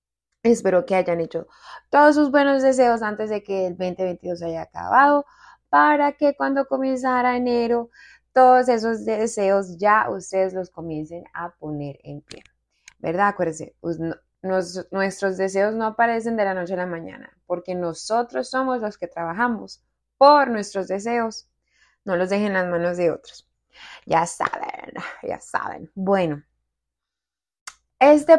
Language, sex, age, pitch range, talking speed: English, female, 20-39, 190-270 Hz, 145 wpm